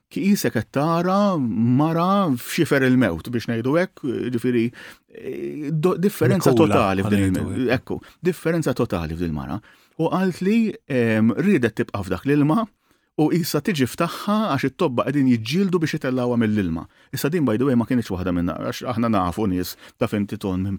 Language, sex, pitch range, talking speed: English, male, 100-155 Hz, 125 wpm